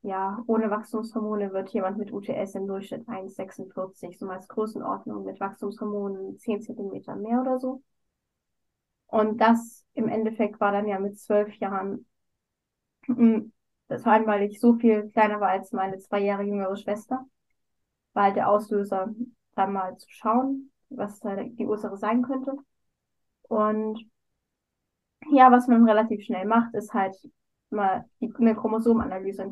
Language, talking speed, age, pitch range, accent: German, 140 wpm, 10-29, 205-235 Hz, German